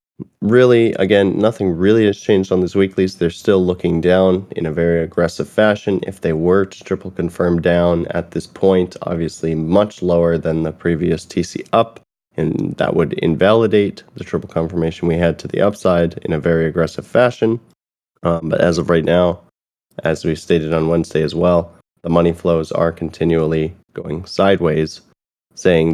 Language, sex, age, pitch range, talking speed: English, male, 20-39, 80-95 Hz, 170 wpm